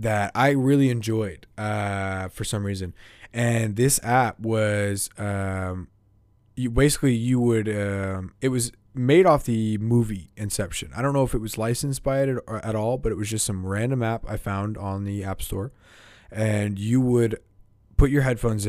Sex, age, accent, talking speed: male, 20-39, American, 185 wpm